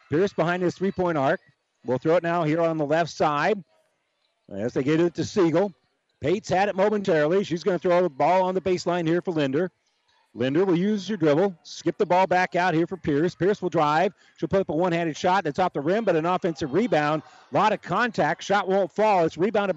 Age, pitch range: 50-69, 145-185 Hz